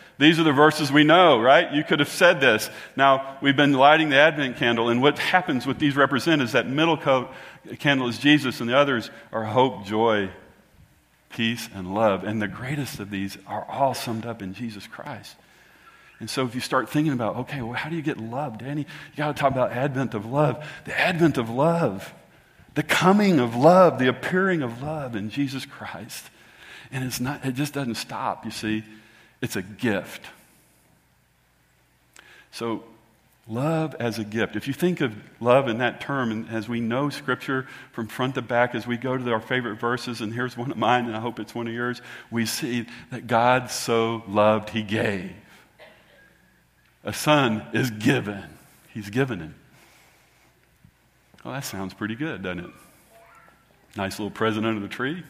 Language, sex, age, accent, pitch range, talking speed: English, male, 40-59, American, 110-145 Hz, 190 wpm